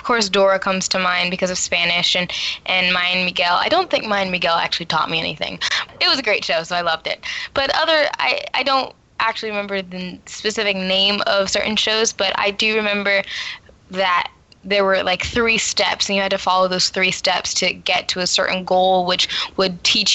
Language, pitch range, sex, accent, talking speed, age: English, 180-200 Hz, female, American, 215 wpm, 10-29